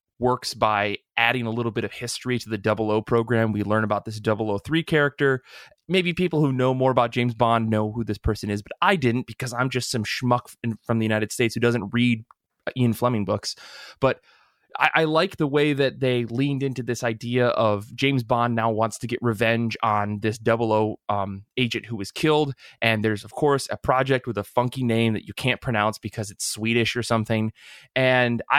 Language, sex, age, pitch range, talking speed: English, male, 20-39, 110-130 Hz, 205 wpm